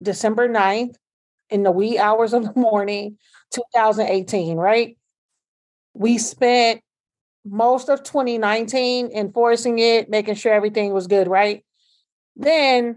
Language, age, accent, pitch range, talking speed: English, 30-49, American, 220-250 Hz, 115 wpm